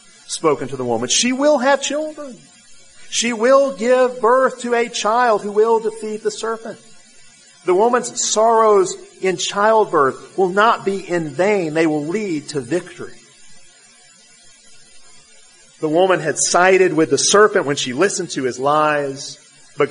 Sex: male